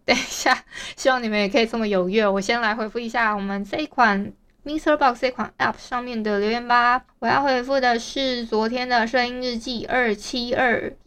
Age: 20-39